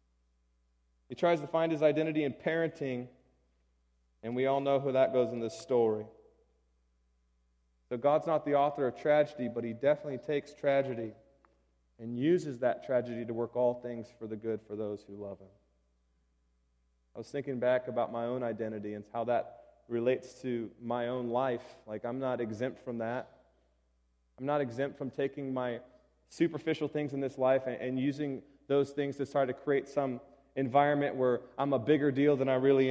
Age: 30-49